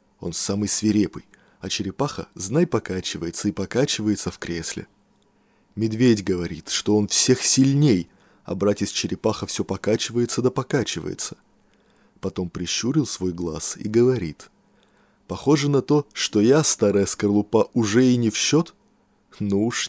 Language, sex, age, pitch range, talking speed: Russian, male, 20-39, 95-135 Hz, 135 wpm